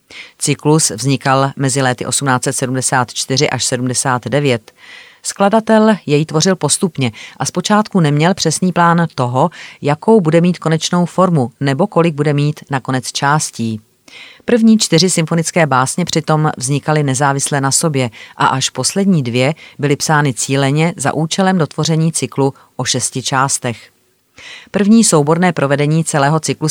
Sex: female